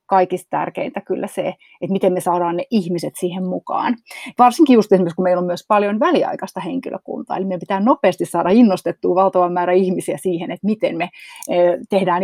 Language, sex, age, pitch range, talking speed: Finnish, female, 30-49, 180-210 Hz, 175 wpm